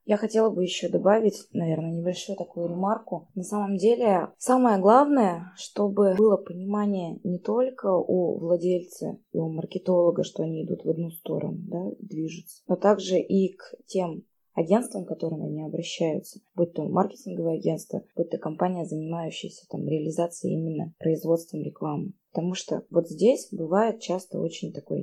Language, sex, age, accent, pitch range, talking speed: Russian, female, 20-39, native, 165-205 Hz, 150 wpm